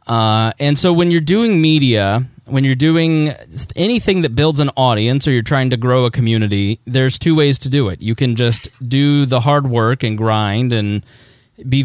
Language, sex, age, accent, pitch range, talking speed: English, male, 20-39, American, 115-145 Hz, 200 wpm